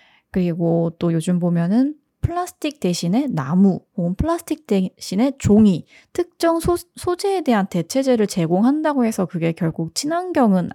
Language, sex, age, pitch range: Korean, female, 20-39, 170-255 Hz